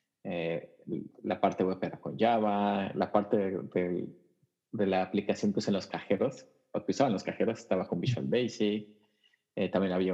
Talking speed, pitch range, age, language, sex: 180 wpm, 95-110 Hz, 30-49, Spanish, male